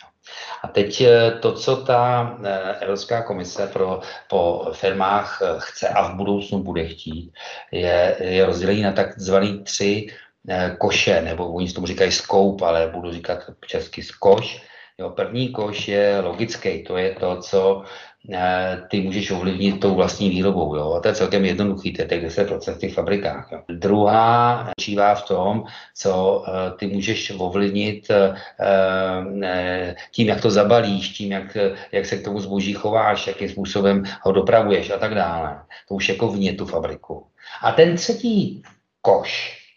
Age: 50-69